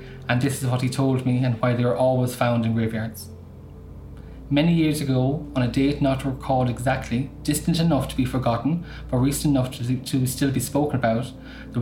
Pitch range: 120-135 Hz